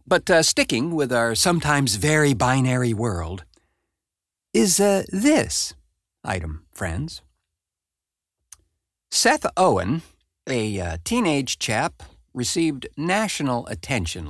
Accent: American